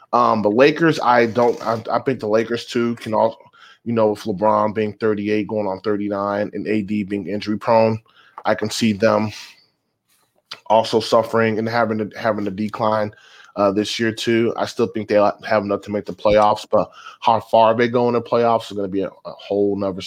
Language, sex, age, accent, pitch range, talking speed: English, male, 20-39, American, 100-110 Hz, 205 wpm